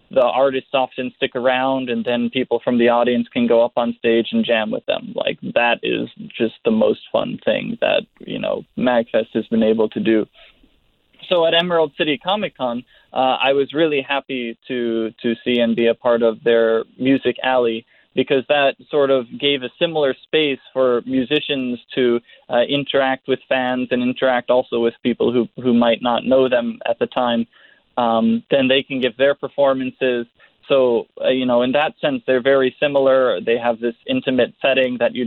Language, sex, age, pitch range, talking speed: English, male, 20-39, 115-135 Hz, 190 wpm